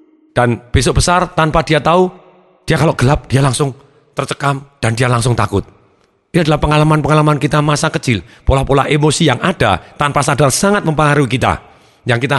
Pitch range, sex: 125-160 Hz, male